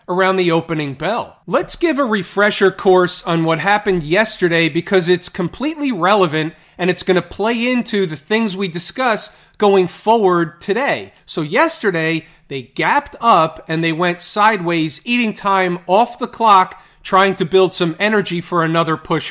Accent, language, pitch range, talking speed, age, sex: American, English, 165-215 Hz, 160 wpm, 40-59, male